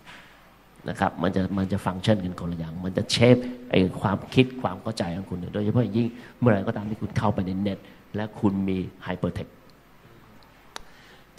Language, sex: Thai, male